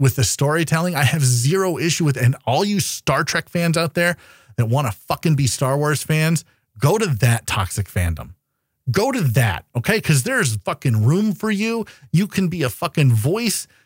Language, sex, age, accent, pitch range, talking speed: English, male, 40-59, American, 120-170 Hz, 195 wpm